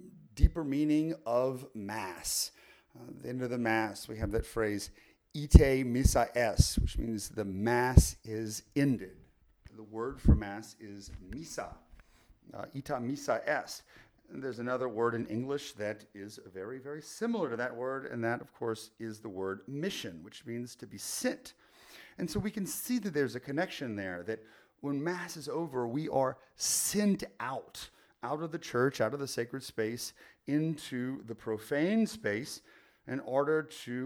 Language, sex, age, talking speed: English, male, 40-59, 170 wpm